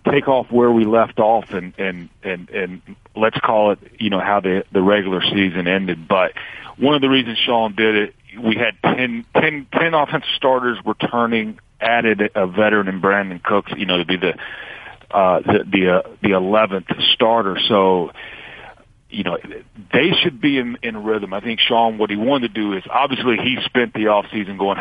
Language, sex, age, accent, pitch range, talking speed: English, male, 40-59, American, 95-115 Hz, 190 wpm